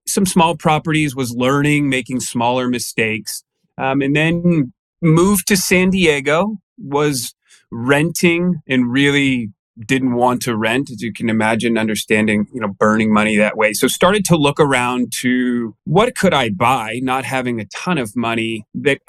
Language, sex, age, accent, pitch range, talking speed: English, male, 30-49, American, 115-145 Hz, 160 wpm